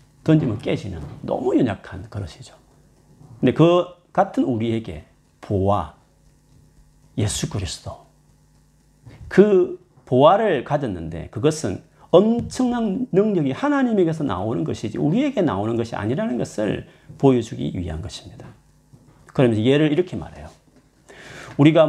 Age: 40-59